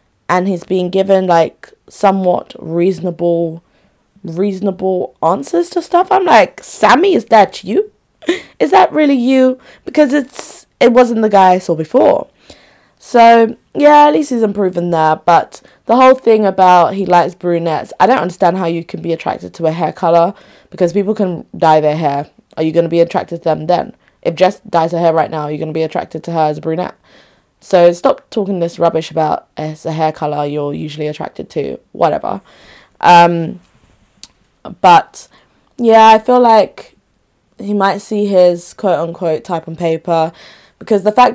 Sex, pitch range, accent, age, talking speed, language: female, 160-200 Hz, British, 20-39, 180 wpm, English